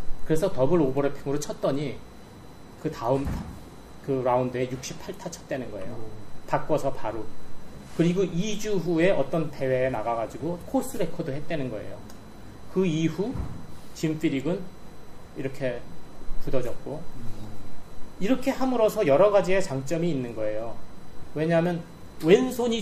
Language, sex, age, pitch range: Korean, male, 30-49, 130-200 Hz